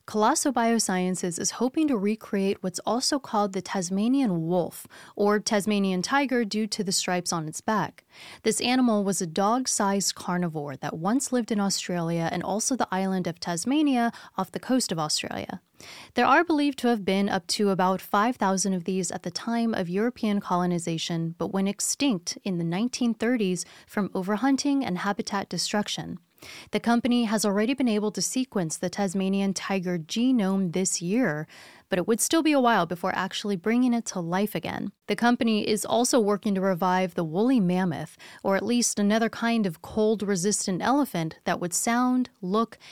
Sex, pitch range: female, 185-230 Hz